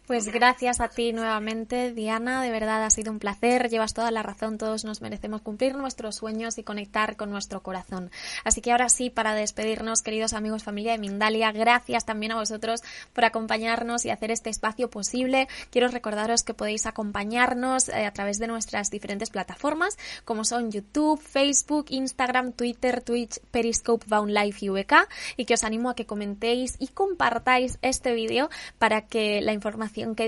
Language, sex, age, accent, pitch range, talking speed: Spanish, female, 10-29, Spanish, 215-255 Hz, 170 wpm